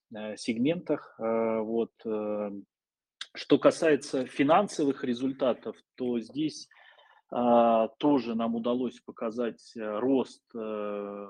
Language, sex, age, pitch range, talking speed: Russian, male, 20-39, 110-135 Hz, 70 wpm